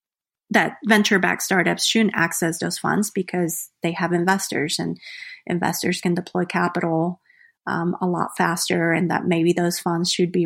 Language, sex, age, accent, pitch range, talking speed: English, female, 30-49, American, 175-210 Hz, 160 wpm